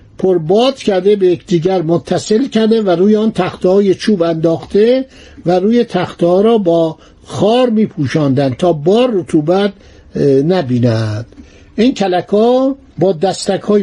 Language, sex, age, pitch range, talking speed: Persian, male, 60-79, 175-230 Hz, 120 wpm